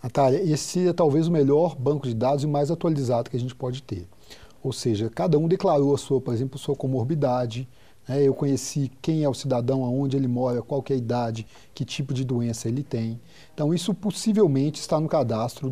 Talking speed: 205 wpm